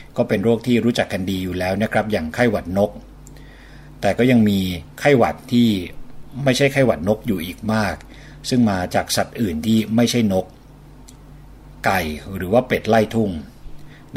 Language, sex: Thai, male